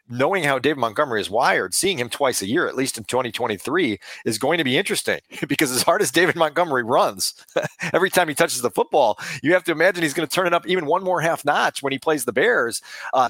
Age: 40-59